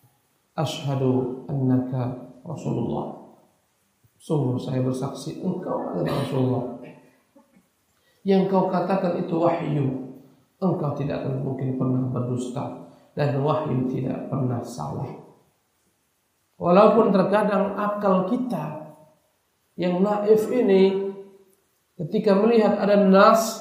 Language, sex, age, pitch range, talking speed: Indonesian, male, 50-69, 135-195 Hz, 90 wpm